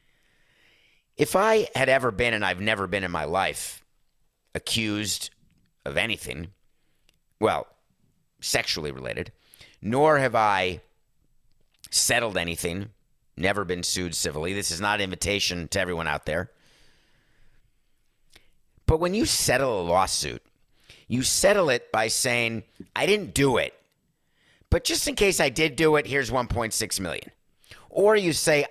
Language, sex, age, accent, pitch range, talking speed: English, male, 50-69, American, 95-135 Hz, 135 wpm